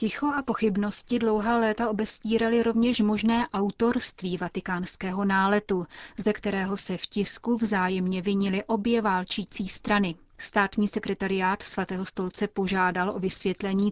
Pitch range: 190-220 Hz